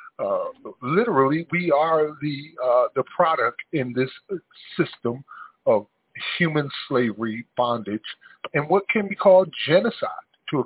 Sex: male